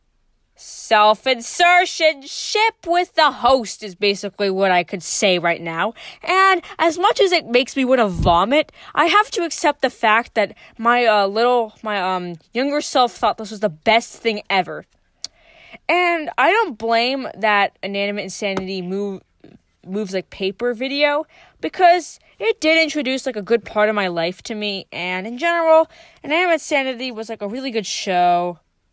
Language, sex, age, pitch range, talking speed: English, female, 20-39, 195-295 Hz, 170 wpm